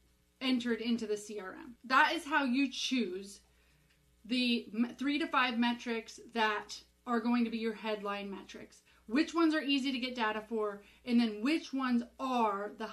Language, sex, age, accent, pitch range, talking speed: English, female, 30-49, American, 235-295 Hz, 165 wpm